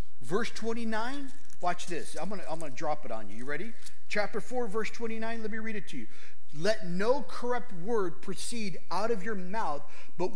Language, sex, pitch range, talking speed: English, male, 165-230 Hz, 210 wpm